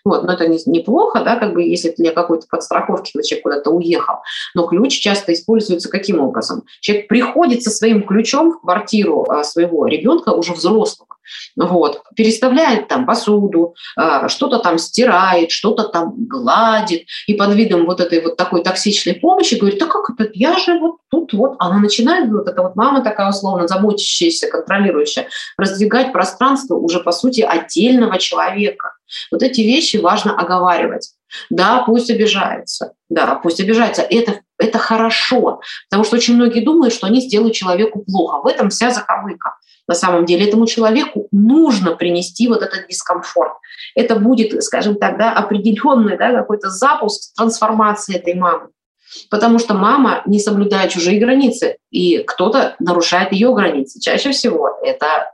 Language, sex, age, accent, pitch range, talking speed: Russian, female, 20-39, native, 180-235 Hz, 155 wpm